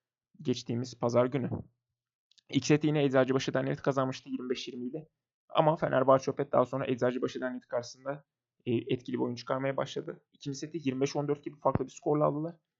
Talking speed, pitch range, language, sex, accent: 160 wpm, 125-150 Hz, Turkish, male, native